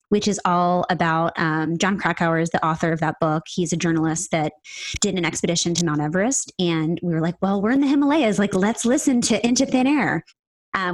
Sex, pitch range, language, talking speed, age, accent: female, 170-225 Hz, English, 220 wpm, 20-39, American